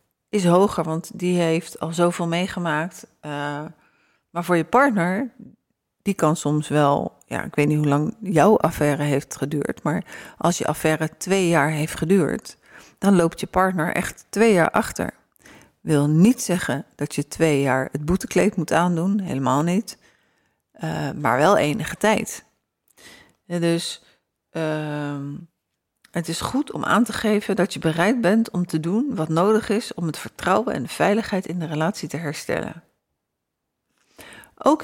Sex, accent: female, Dutch